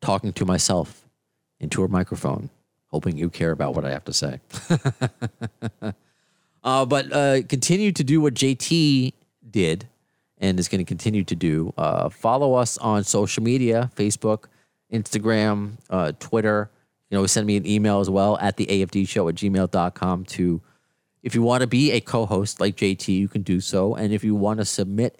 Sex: male